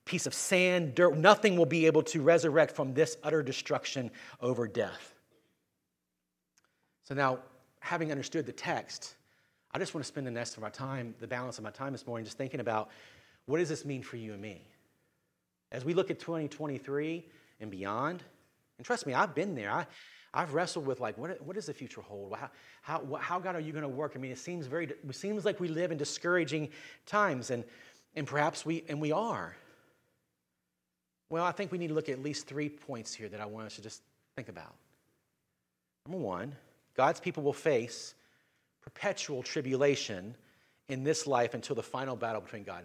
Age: 40-59